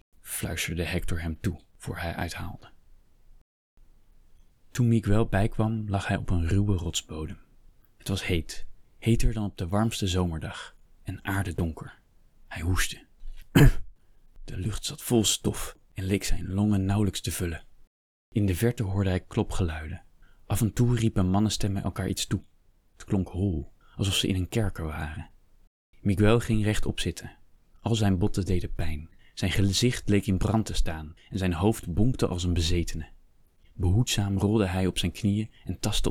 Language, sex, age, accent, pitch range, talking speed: Dutch, male, 20-39, Dutch, 90-110 Hz, 160 wpm